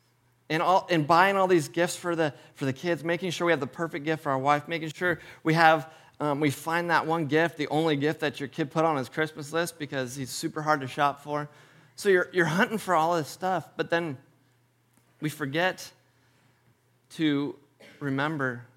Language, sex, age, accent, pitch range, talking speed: English, male, 30-49, American, 120-155 Hz, 205 wpm